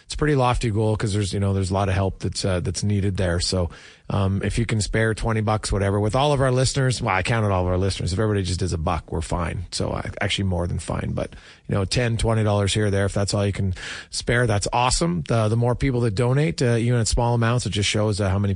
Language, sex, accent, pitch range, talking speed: English, male, American, 100-140 Hz, 285 wpm